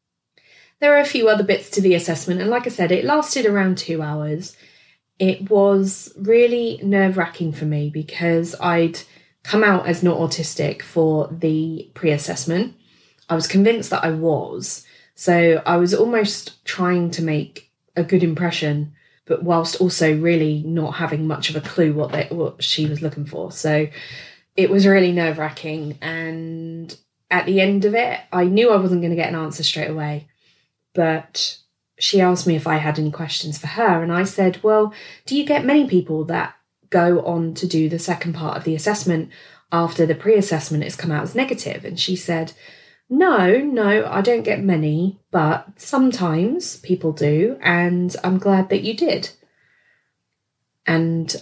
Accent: British